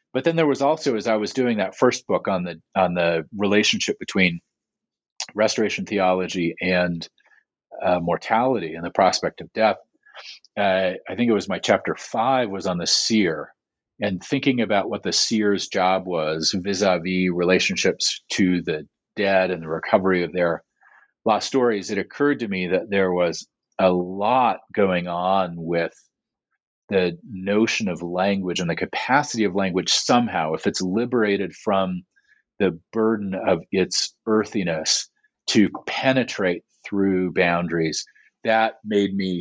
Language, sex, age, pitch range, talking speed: English, male, 40-59, 90-105 Hz, 150 wpm